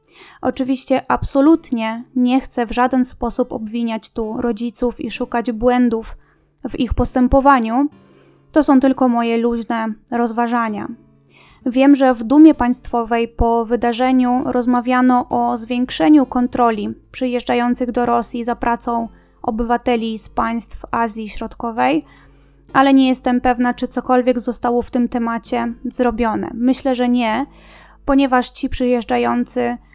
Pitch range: 230-260 Hz